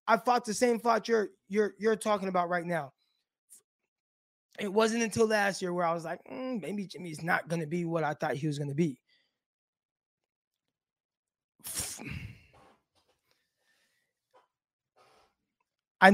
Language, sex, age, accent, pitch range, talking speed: English, male, 20-39, American, 170-205 Hz, 140 wpm